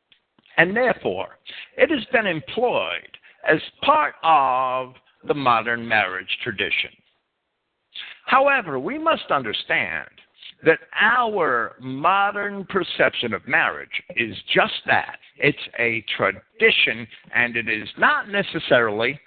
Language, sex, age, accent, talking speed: English, male, 60-79, American, 105 wpm